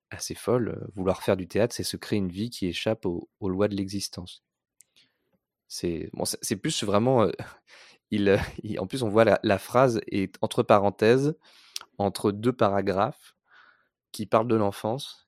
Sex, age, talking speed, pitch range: male, 20-39, 170 wpm, 90-110 Hz